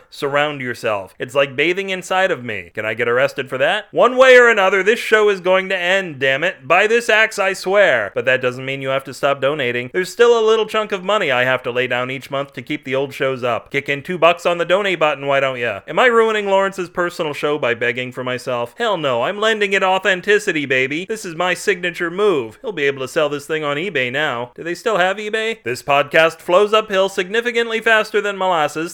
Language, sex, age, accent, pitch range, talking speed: English, male, 30-49, American, 130-190 Hz, 240 wpm